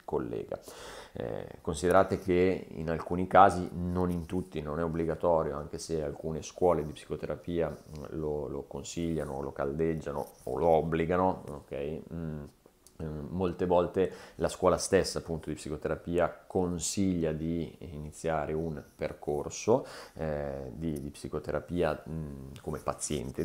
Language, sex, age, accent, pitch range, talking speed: Italian, male, 30-49, native, 75-85 Hz, 120 wpm